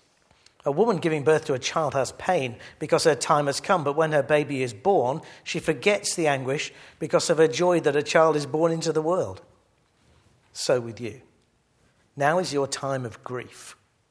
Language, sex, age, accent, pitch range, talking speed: English, male, 50-69, British, 125-160 Hz, 190 wpm